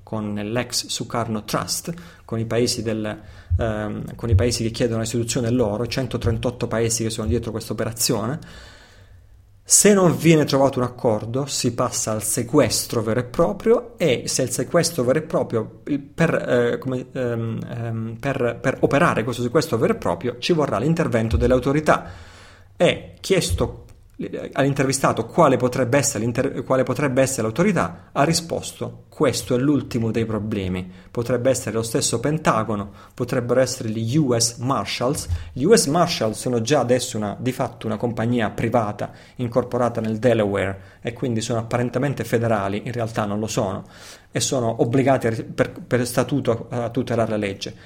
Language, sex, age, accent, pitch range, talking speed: Italian, male, 30-49, native, 110-135 Hz, 155 wpm